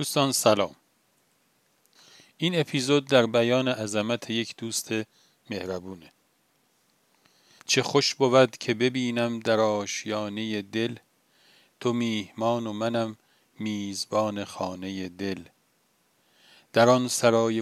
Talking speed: 95 wpm